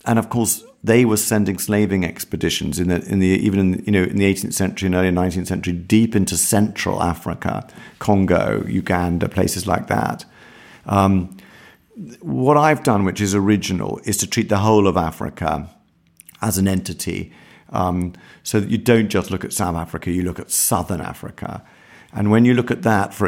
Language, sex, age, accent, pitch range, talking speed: Dutch, male, 50-69, British, 90-105 Hz, 185 wpm